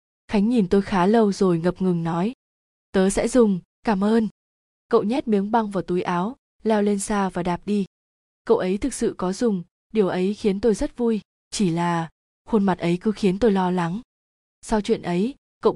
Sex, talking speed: female, 200 wpm